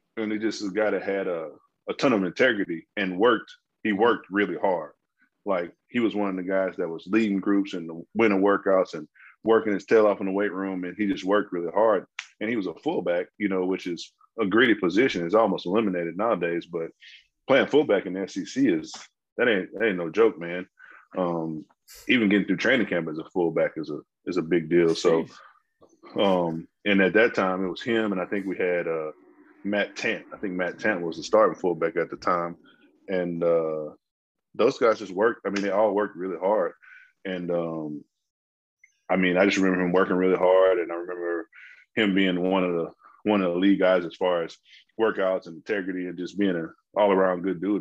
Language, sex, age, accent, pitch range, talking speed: English, male, 20-39, American, 90-105 Hz, 215 wpm